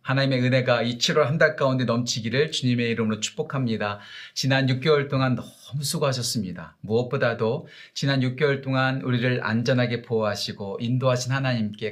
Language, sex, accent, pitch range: Korean, male, native, 115-145 Hz